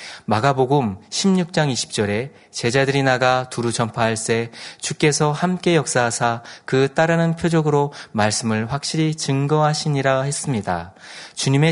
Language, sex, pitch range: Korean, male, 115-150 Hz